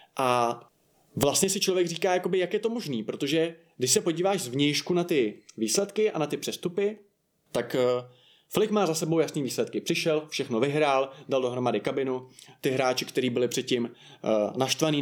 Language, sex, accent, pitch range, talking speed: Czech, male, native, 135-165 Hz, 165 wpm